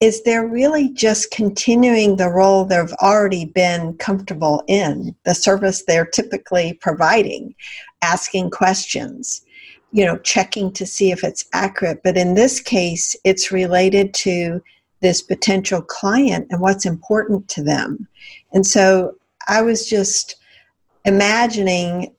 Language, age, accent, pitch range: English, 50-69, American, 185-230 Hz